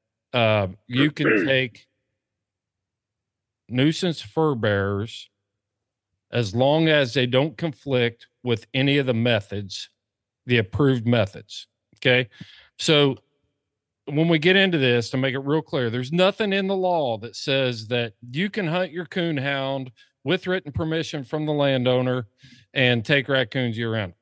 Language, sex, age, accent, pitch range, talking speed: English, male, 40-59, American, 115-150 Hz, 145 wpm